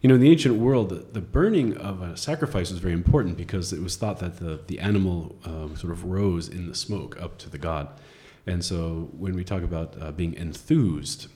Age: 30-49